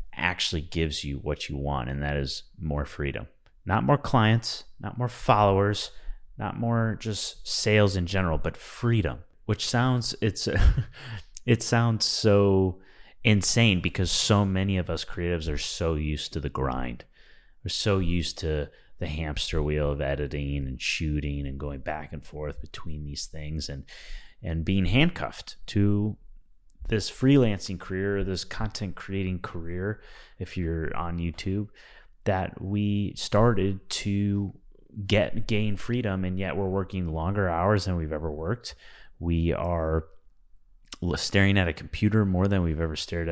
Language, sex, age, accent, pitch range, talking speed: English, male, 30-49, American, 80-105 Hz, 150 wpm